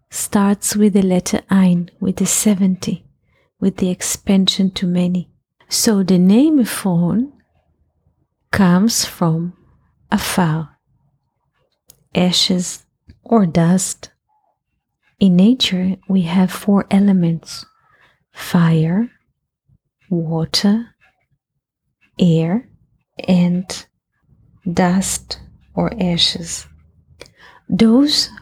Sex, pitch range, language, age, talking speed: female, 175-195 Hz, English, 30-49, 80 wpm